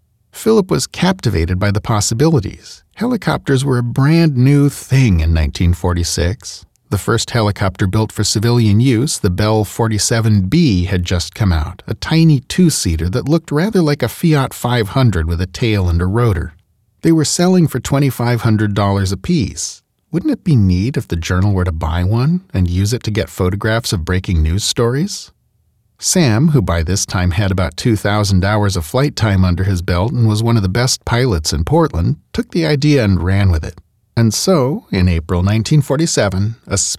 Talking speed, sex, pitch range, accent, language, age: 175 wpm, male, 90-125 Hz, American, English, 40-59